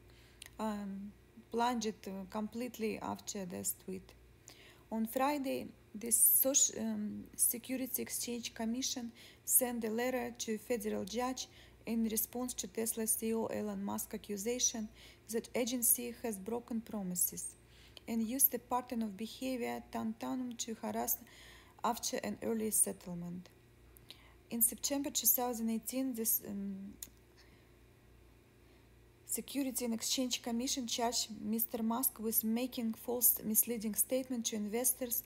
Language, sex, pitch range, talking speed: English, female, 210-240 Hz, 115 wpm